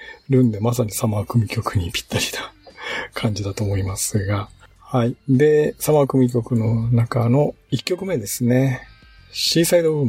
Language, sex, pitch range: Japanese, male, 115-140 Hz